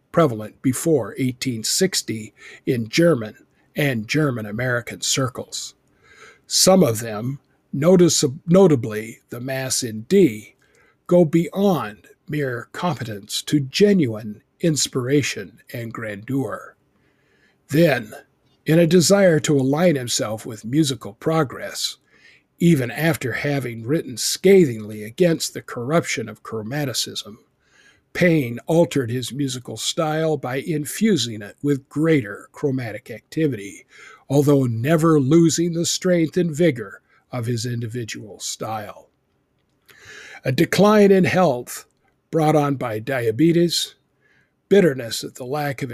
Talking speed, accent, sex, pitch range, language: 105 wpm, American, male, 120-160 Hz, English